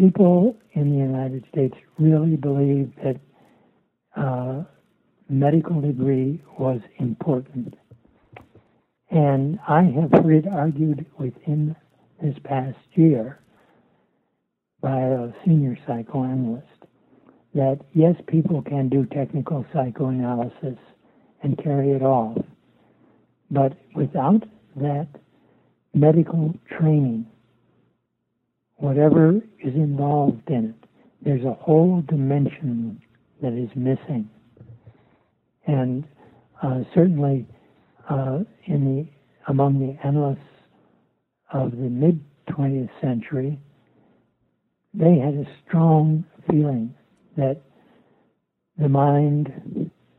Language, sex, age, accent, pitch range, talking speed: English, male, 60-79, American, 130-160 Hz, 90 wpm